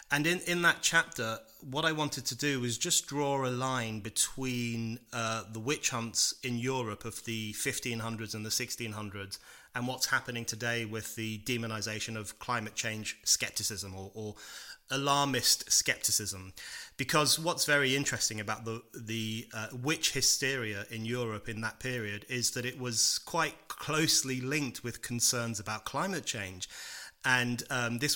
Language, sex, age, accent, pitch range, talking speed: English, male, 30-49, British, 110-130 Hz, 155 wpm